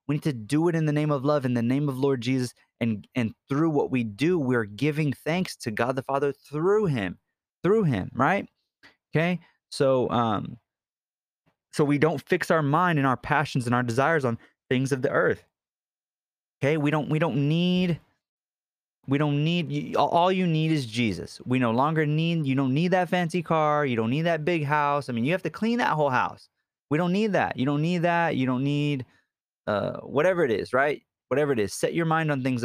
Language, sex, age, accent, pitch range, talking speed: English, male, 20-39, American, 130-165 Hz, 215 wpm